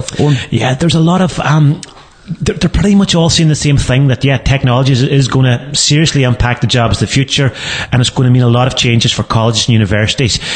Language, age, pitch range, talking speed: English, 30-49, 115-140 Hz, 245 wpm